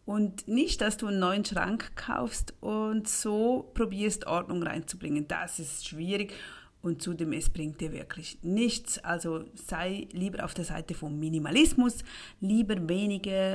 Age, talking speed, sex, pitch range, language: 40-59, 145 wpm, female, 170-225 Hz, German